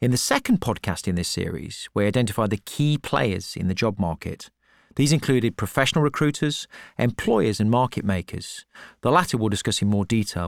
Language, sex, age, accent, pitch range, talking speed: English, male, 40-59, British, 100-135 Hz, 180 wpm